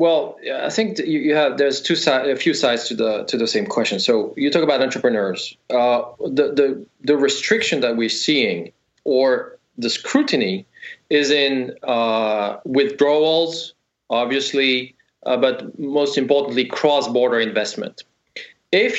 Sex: male